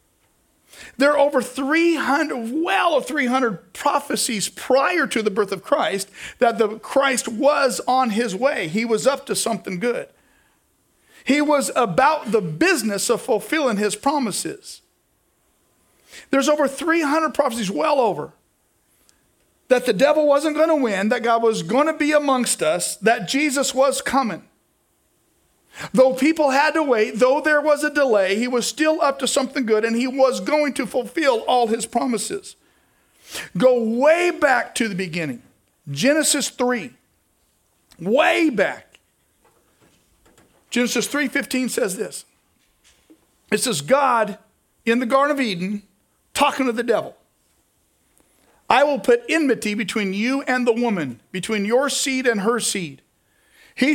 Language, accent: English, American